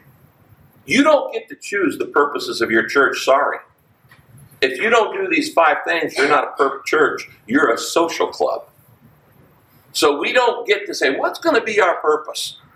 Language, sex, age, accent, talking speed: English, male, 50-69, American, 185 wpm